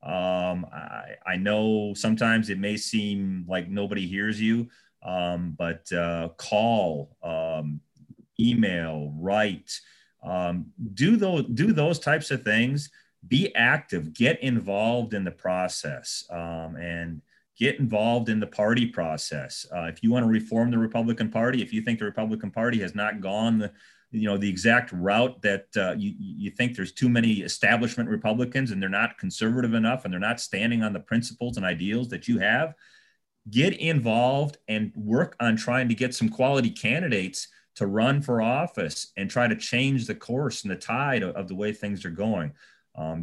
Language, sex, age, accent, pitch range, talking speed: English, male, 30-49, American, 95-120 Hz, 175 wpm